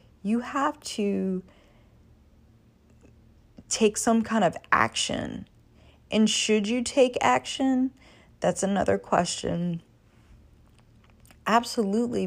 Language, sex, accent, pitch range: English, female, American, 185-240 Hz